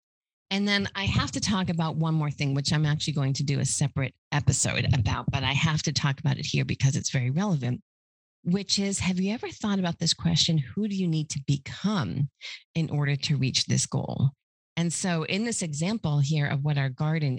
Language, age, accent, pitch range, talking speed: English, 40-59, American, 140-180 Hz, 215 wpm